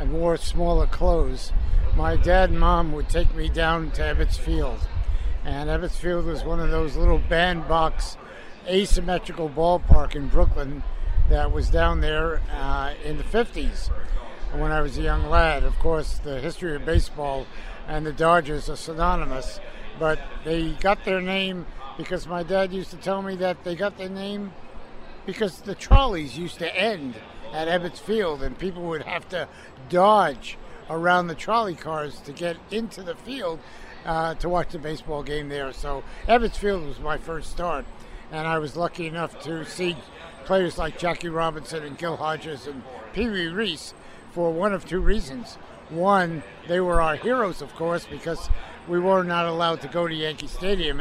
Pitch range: 150-180 Hz